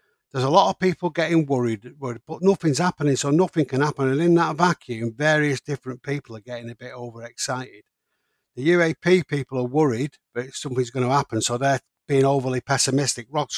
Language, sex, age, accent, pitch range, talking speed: English, male, 50-69, British, 120-150 Hz, 190 wpm